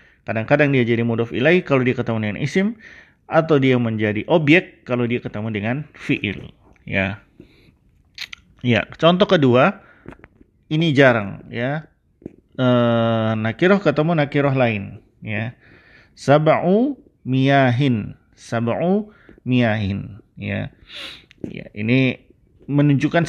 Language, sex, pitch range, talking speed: Indonesian, male, 120-180 Hz, 100 wpm